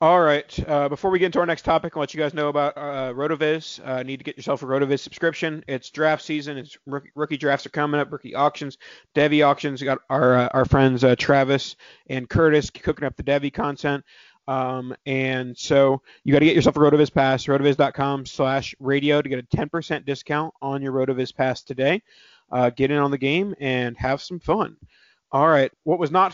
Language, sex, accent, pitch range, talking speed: English, male, American, 130-150 Hz, 215 wpm